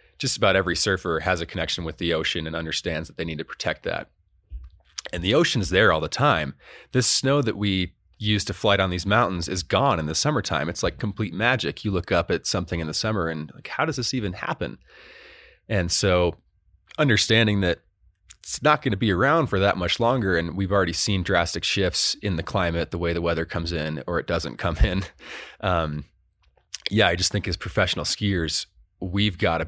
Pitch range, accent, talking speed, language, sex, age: 80-100 Hz, American, 210 wpm, English, male, 30-49